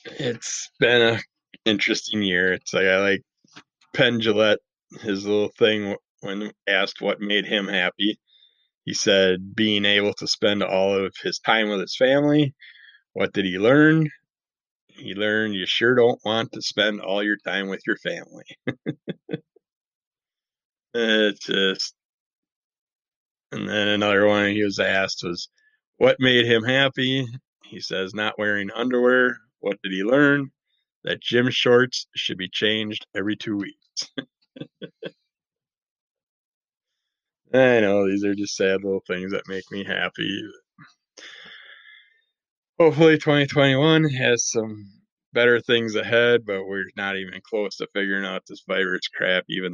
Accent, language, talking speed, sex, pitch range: American, English, 140 wpm, male, 95-120 Hz